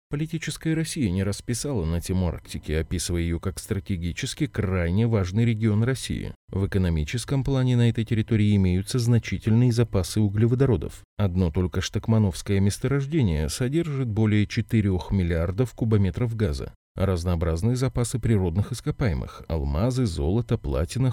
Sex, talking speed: male, 120 wpm